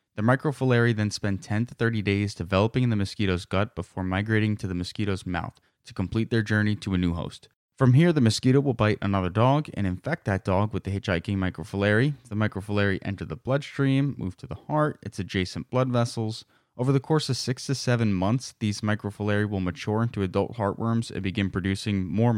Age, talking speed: 20-39, 200 wpm